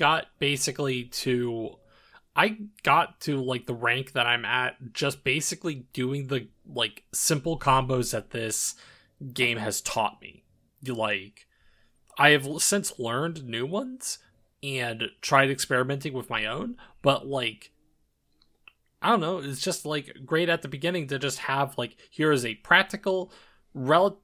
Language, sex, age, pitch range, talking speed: English, male, 20-39, 115-145 Hz, 145 wpm